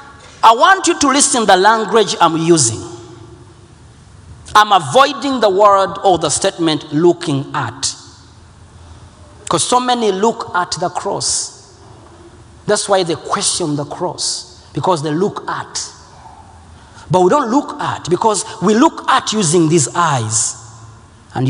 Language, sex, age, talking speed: Swedish, male, 40-59, 135 wpm